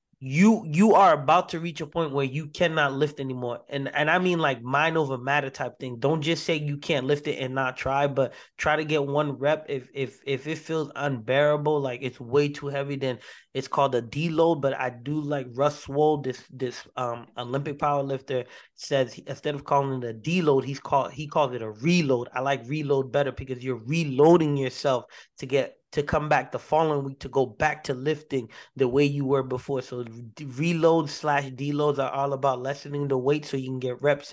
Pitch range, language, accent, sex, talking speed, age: 135-160 Hz, English, American, male, 215 wpm, 20-39